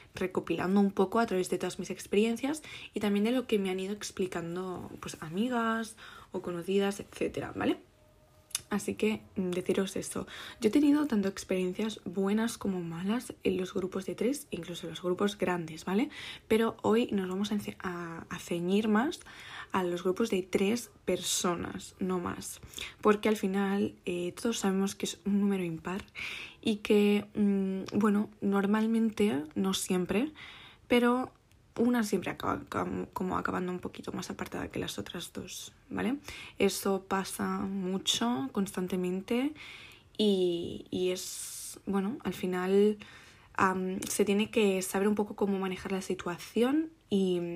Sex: female